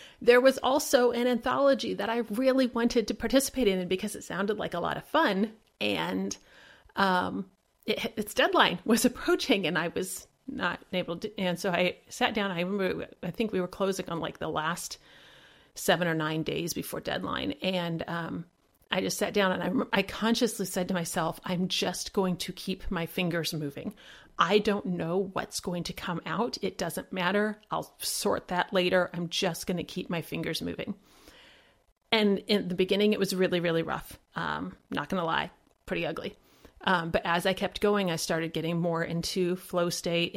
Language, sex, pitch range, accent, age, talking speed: English, female, 175-210 Hz, American, 40-59, 190 wpm